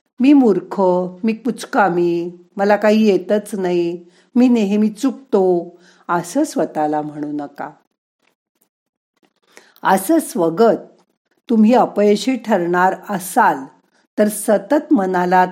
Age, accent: 50-69, native